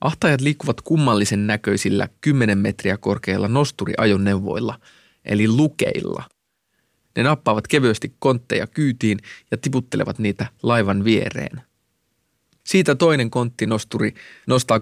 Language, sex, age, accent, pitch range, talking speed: Finnish, male, 30-49, native, 105-130 Hz, 95 wpm